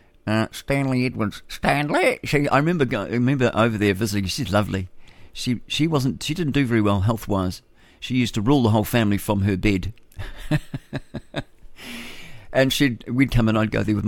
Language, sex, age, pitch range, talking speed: English, male, 50-69, 100-120 Hz, 185 wpm